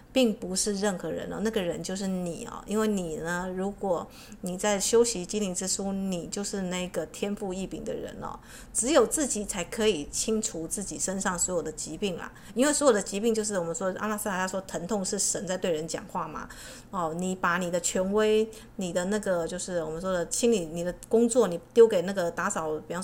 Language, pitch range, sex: Chinese, 180-225 Hz, female